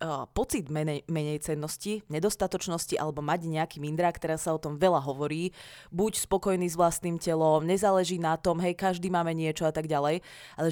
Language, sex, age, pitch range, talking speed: Czech, female, 20-39, 155-195 Hz, 175 wpm